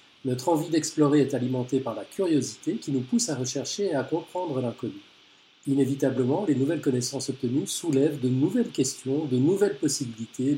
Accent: French